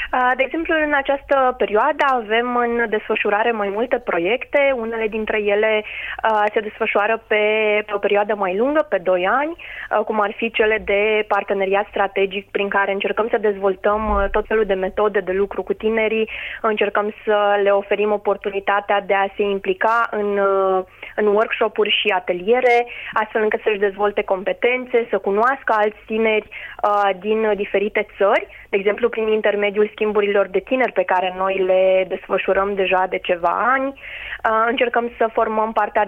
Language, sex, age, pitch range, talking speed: Romanian, female, 20-39, 195-220 Hz, 155 wpm